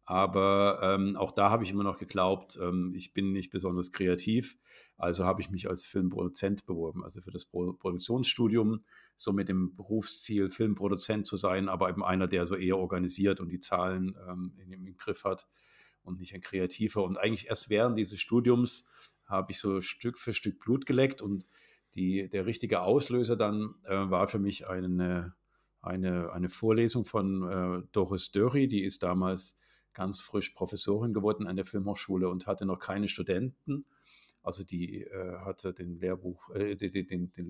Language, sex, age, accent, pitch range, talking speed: German, male, 50-69, German, 90-110 Hz, 170 wpm